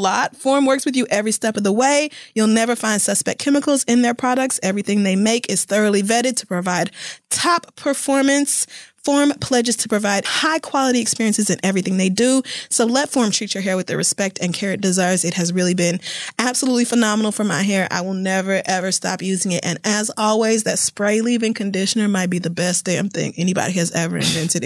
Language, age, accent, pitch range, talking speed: English, 20-39, American, 195-260 Hz, 205 wpm